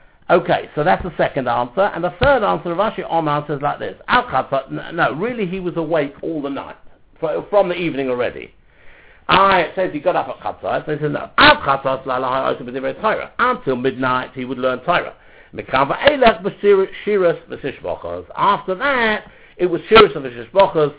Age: 60-79